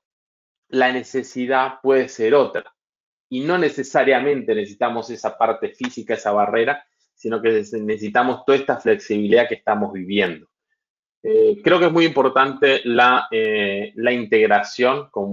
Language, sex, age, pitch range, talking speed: Spanish, male, 20-39, 105-155 Hz, 130 wpm